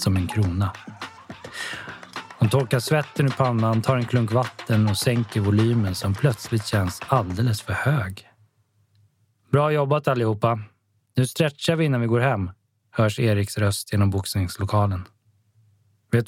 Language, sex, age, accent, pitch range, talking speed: Swedish, male, 20-39, native, 105-120 Hz, 135 wpm